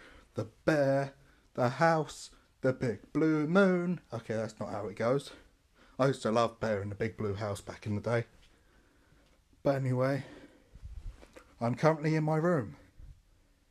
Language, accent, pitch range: English, British, 115-160 Hz